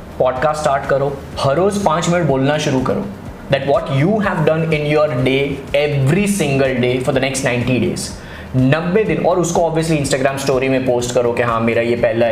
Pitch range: 125-165 Hz